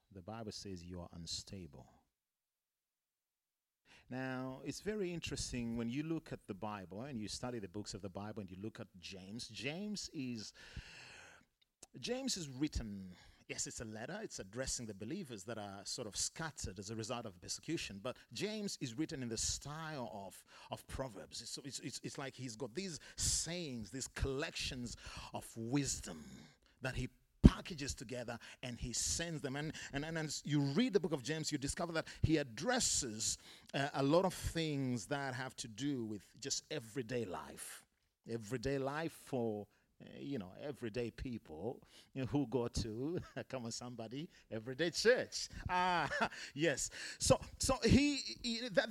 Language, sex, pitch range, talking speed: English, male, 110-160 Hz, 165 wpm